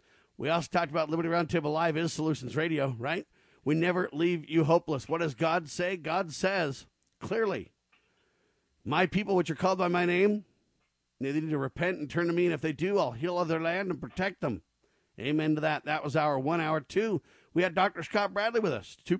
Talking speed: 210 wpm